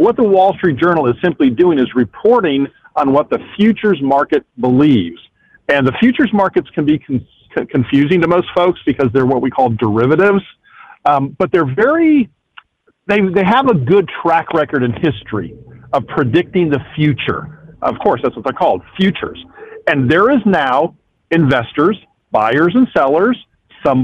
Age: 50-69